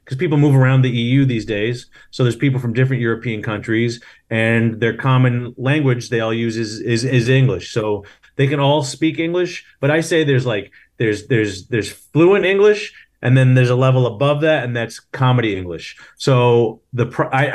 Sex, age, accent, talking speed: male, 30-49, American, 190 wpm